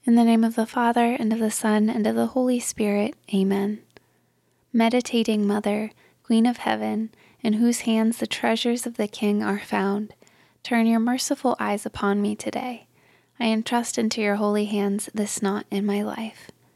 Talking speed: 175 wpm